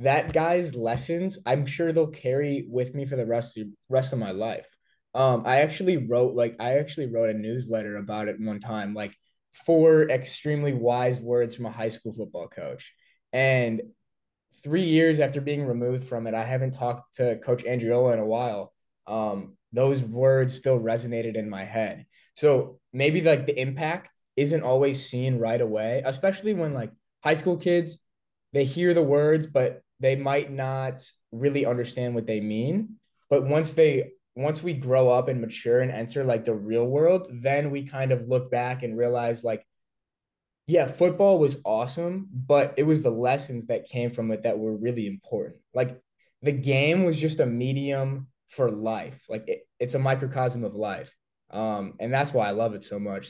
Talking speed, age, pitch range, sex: 185 wpm, 20-39, 115-145 Hz, male